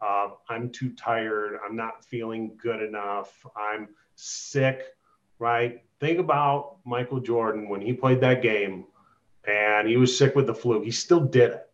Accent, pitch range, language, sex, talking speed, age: American, 120-155 Hz, English, male, 160 wpm, 30-49